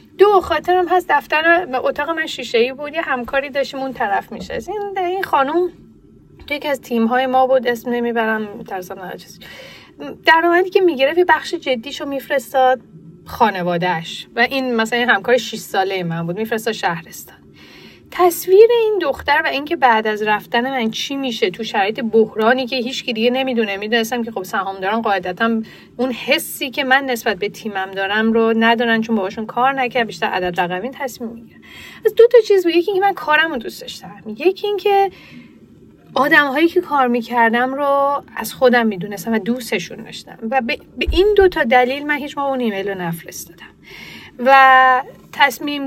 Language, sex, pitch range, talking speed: Persian, female, 225-320 Hz, 175 wpm